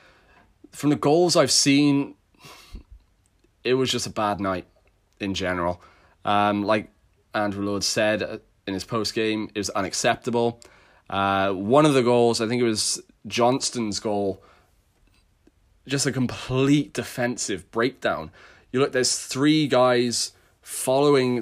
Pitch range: 100-130 Hz